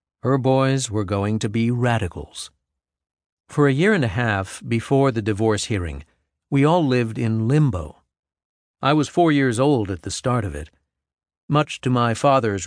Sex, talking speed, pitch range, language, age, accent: male, 170 wpm, 95-135 Hz, English, 50-69, American